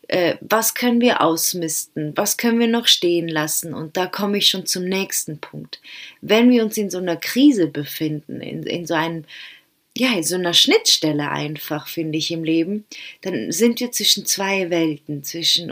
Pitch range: 165-220 Hz